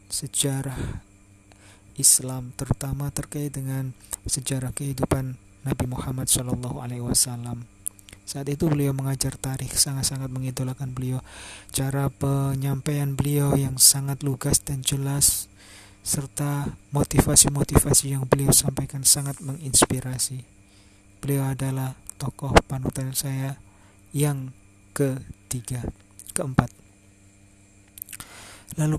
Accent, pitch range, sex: native, 100-140 Hz, male